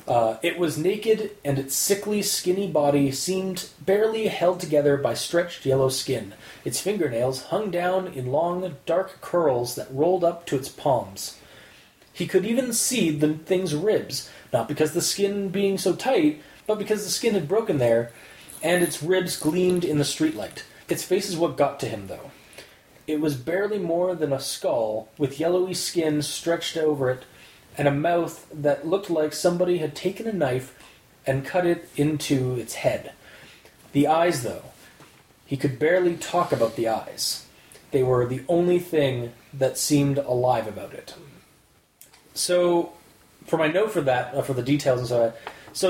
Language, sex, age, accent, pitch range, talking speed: English, male, 30-49, American, 140-180 Hz, 170 wpm